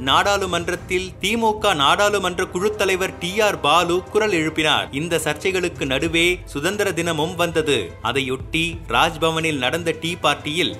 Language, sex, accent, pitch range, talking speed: Tamil, male, native, 160-185 Hz, 120 wpm